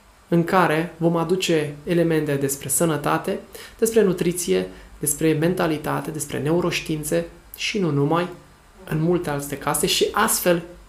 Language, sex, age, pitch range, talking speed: Romanian, male, 20-39, 140-175 Hz, 120 wpm